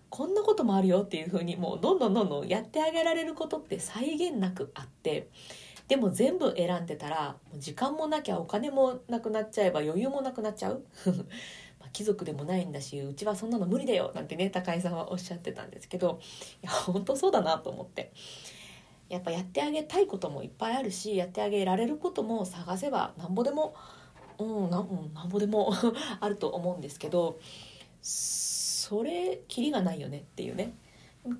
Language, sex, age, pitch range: Japanese, female, 40-59, 170-220 Hz